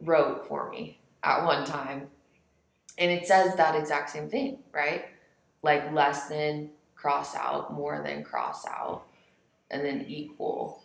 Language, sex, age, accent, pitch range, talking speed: English, female, 20-39, American, 140-175 Hz, 145 wpm